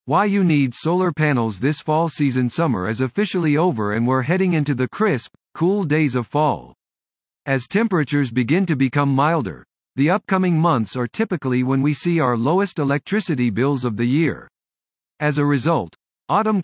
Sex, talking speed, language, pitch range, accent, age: male, 170 wpm, English, 120-175 Hz, American, 50-69